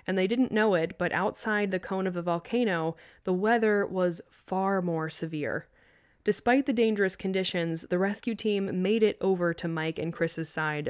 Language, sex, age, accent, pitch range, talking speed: English, female, 20-39, American, 165-210 Hz, 180 wpm